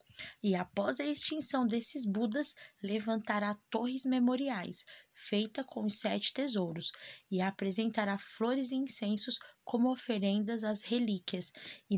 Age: 20-39